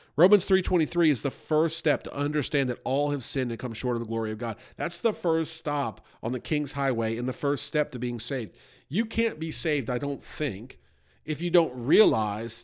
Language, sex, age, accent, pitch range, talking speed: English, male, 50-69, American, 120-150 Hz, 220 wpm